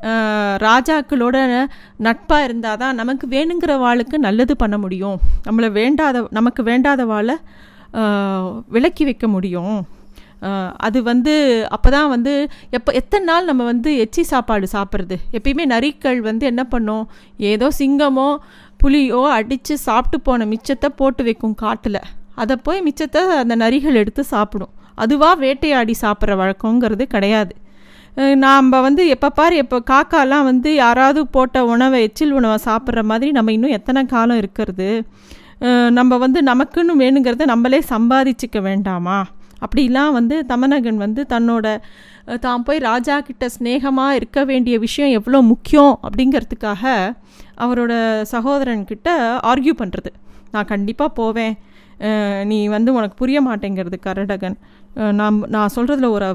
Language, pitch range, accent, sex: Tamil, 215-275 Hz, native, female